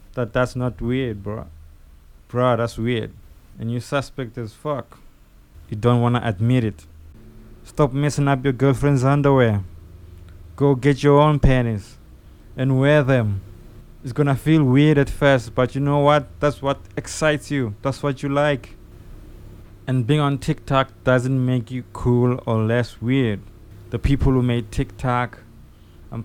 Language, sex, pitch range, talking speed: English, male, 110-135 Hz, 155 wpm